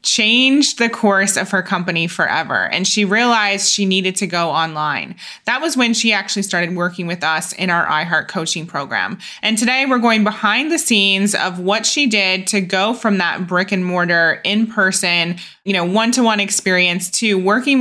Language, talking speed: English, 190 wpm